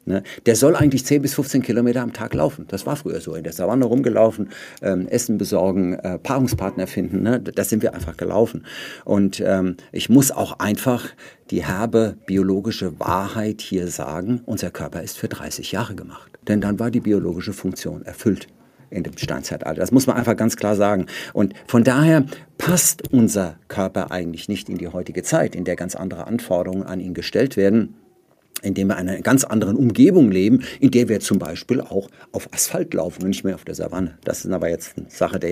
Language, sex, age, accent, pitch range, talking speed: German, male, 60-79, German, 90-120 Hz, 200 wpm